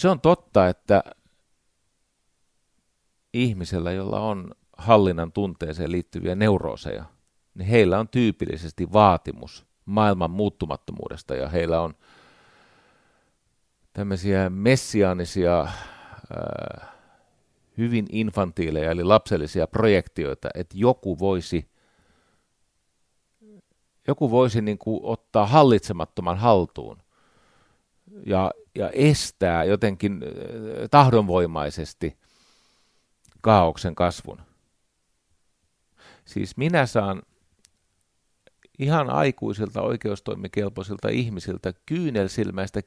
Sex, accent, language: male, native, Finnish